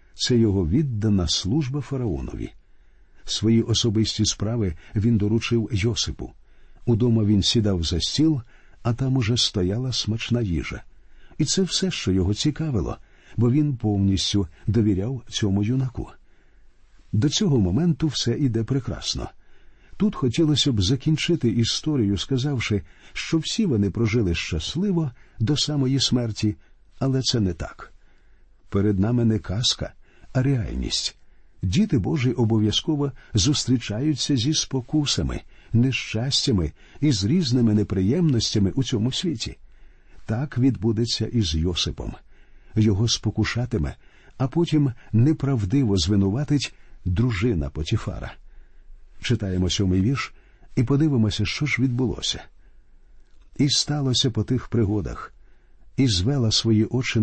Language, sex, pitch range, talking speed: Ukrainian, male, 100-135 Hz, 110 wpm